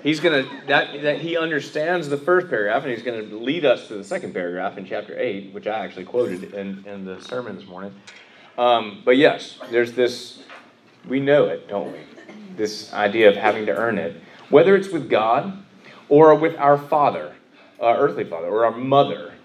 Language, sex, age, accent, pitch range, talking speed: English, male, 30-49, American, 105-145 Hz, 195 wpm